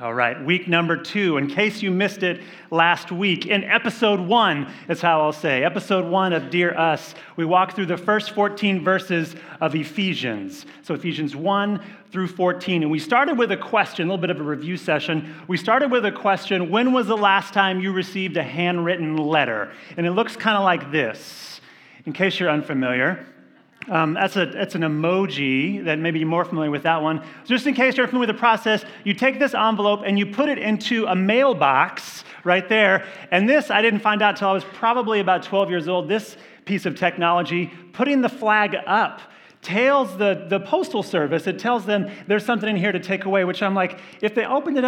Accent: American